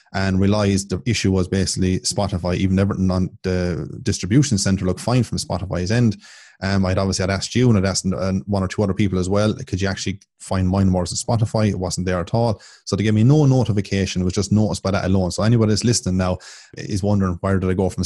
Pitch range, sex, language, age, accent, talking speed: 95-105 Hz, male, English, 20-39, Irish, 240 wpm